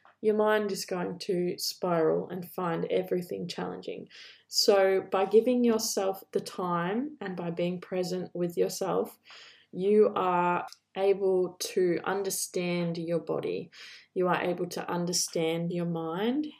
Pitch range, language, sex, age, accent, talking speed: 170-210 Hz, English, female, 20-39, Australian, 130 wpm